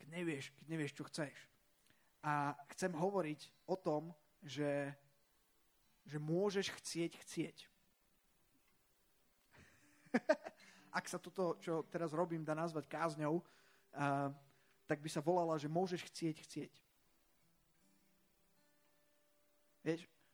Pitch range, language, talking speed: 145-185 Hz, Slovak, 100 wpm